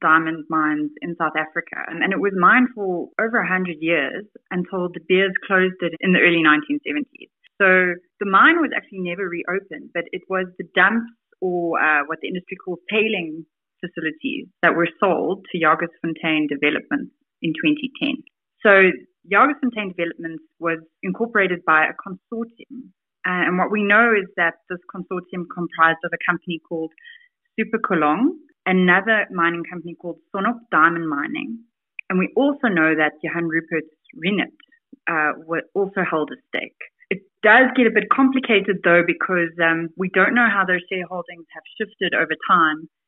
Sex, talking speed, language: female, 155 wpm, English